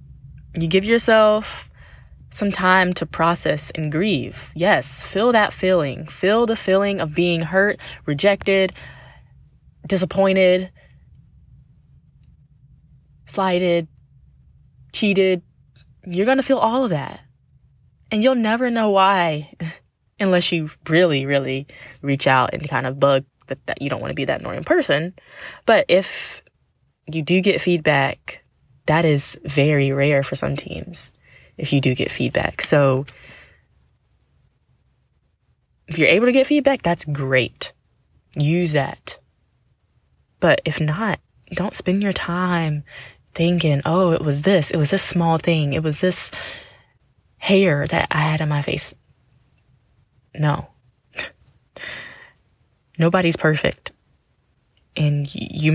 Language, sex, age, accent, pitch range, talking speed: English, female, 10-29, American, 140-190 Hz, 125 wpm